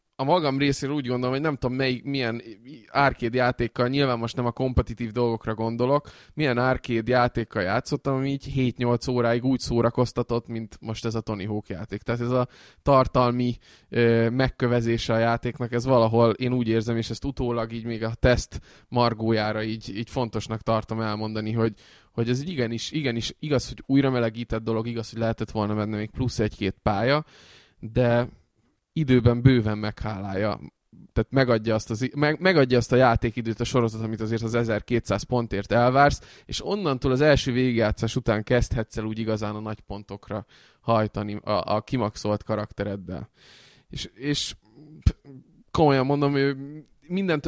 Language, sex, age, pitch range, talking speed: Hungarian, male, 20-39, 110-130 Hz, 160 wpm